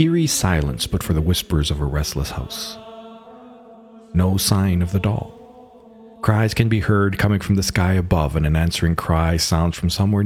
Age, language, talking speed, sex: 40-59, English, 180 wpm, male